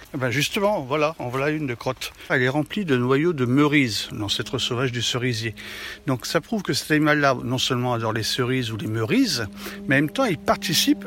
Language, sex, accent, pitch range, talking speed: French, male, French, 125-155 Hz, 215 wpm